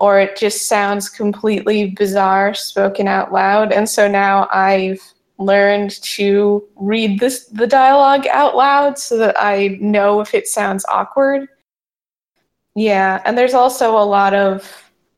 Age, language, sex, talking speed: 20-39, English, female, 140 wpm